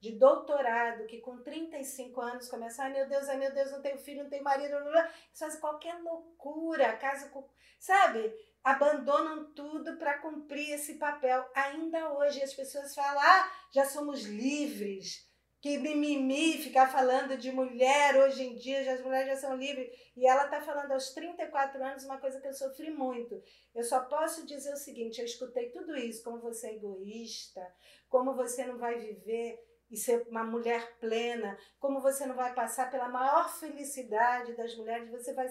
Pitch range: 240-295 Hz